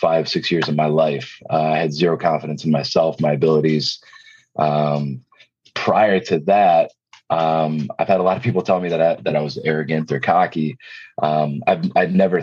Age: 30-49